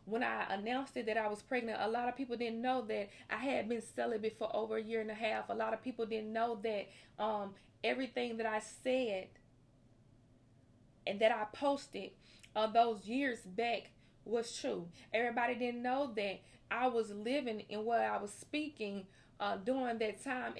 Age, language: 20-39, English